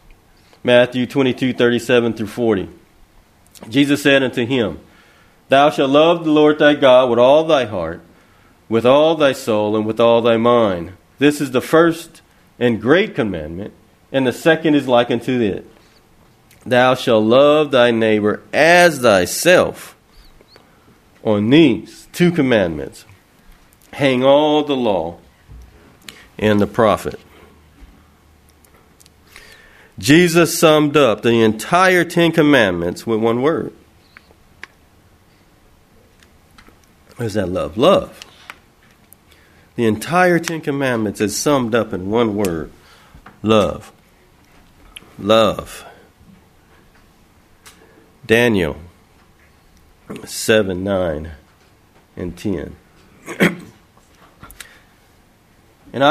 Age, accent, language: 40-59, American, English